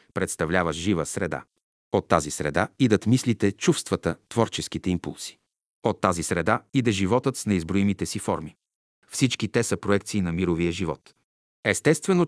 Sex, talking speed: male, 135 wpm